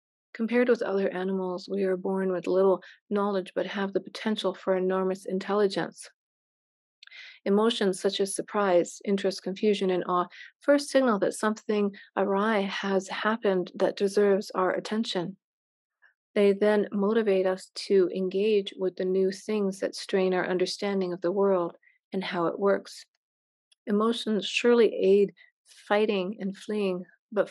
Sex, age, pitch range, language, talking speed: female, 40-59, 185-215 Hz, English, 140 wpm